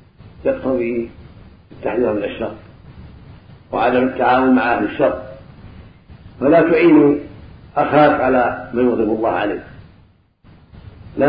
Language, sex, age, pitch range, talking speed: Arabic, male, 50-69, 100-135 Hz, 85 wpm